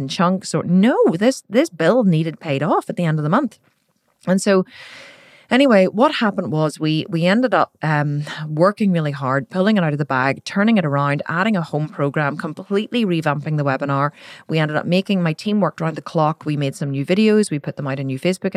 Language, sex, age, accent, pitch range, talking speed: English, female, 30-49, Irish, 140-185 Hz, 225 wpm